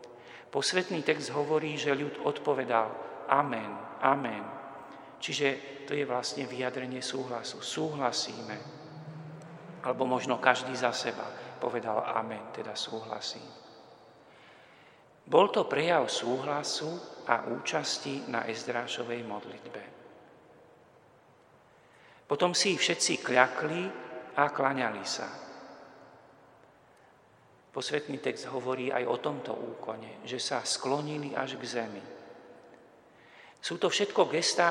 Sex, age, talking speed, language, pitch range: male, 50-69, 100 wpm, Slovak, 125-150 Hz